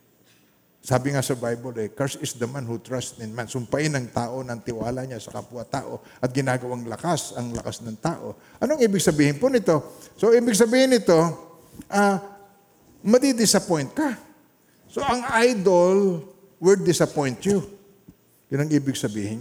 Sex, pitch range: male, 125-195 Hz